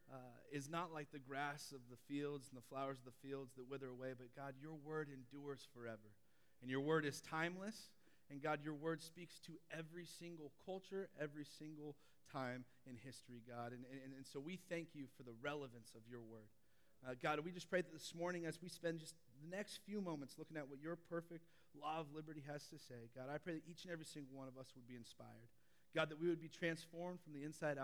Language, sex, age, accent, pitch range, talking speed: English, male, 30-49, American, 120-155 Hz, 230 wpm